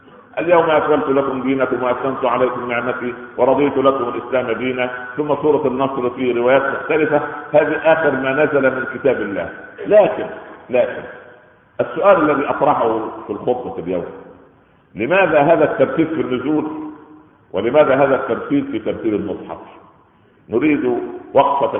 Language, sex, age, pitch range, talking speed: Arabic, male, 50-69, 125-160 Hz, 125 wpm